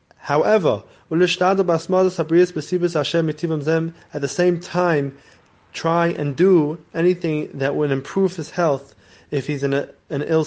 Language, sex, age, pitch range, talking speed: English, male, 20-39, 135-165 Hz, 115 wpm